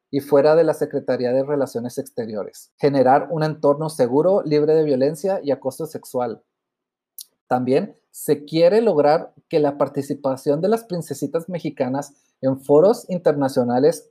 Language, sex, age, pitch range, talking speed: Spanish, male, 30-49, 135-165 Hz, 135 wpm